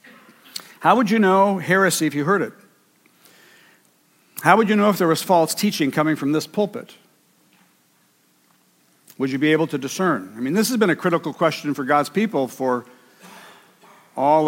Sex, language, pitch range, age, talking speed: male, English, 140-185 Hz, 50-69, 170 wpm